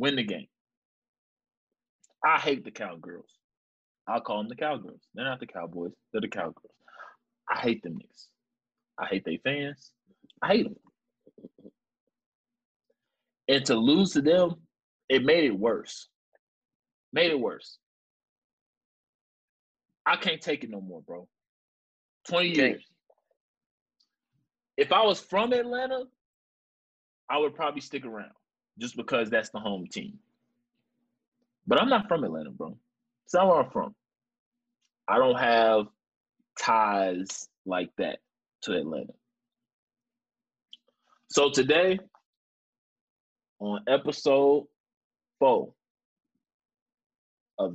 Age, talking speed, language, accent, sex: 30-49, 115 wpm, English, American, male